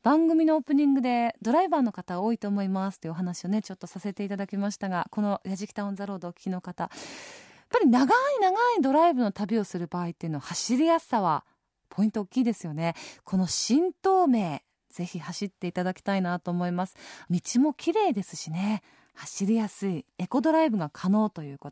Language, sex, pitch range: Japanese, female, 190-280 Hz